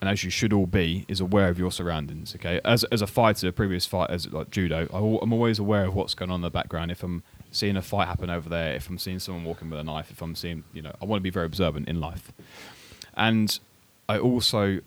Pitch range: 90-115 Hz